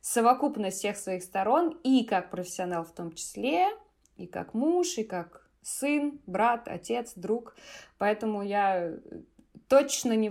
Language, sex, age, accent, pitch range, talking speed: Russian, female, 20-39, native, 170-205 Hz, 135 wpm